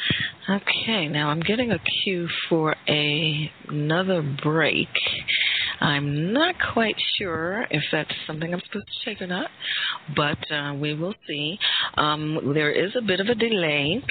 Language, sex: English, female